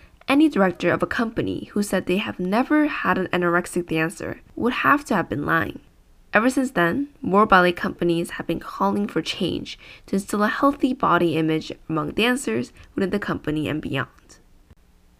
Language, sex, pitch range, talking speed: English, female, 165-235 Hz, 175 wpm